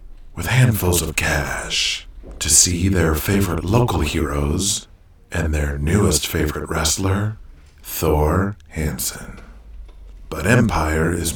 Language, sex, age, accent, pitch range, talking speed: English, male, 50-69, American, 75-100 Hz, 105 wpm